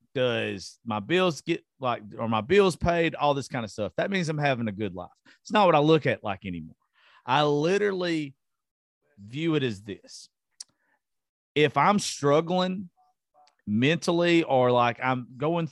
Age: 40-59